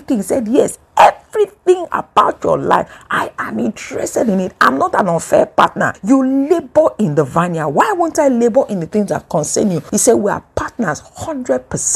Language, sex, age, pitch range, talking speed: English, female, 50-69, 135-175 Hz, 185 wpm